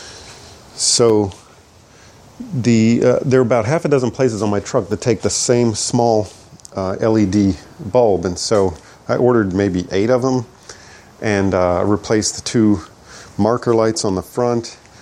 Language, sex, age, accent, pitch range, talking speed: English, male, 40-59, American, 95-115 Hz, 155 wpm